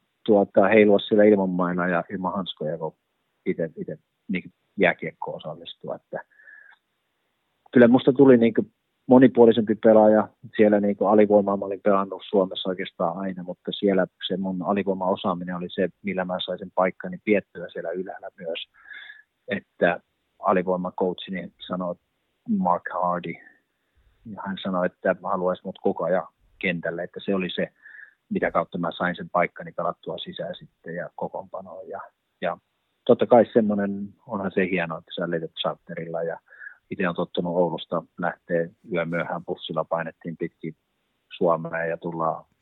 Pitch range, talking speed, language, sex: 85-100 Hz, 130 wpm, Finnish, male